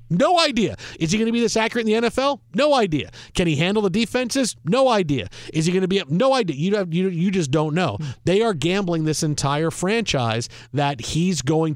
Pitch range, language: 150-205 Hz, English